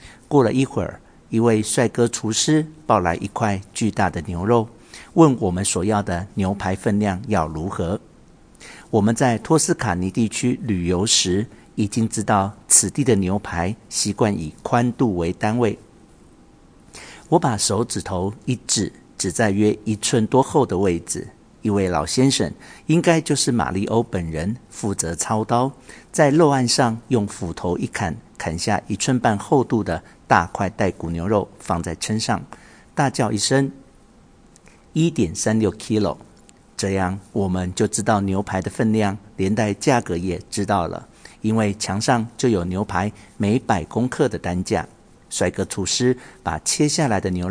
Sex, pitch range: male, 95-120 Hz